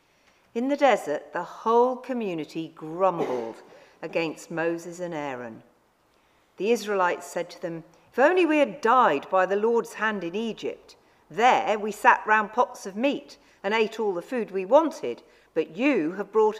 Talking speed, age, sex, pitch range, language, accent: 165 wpm, 50-69, female, 190-280 Hz, English, British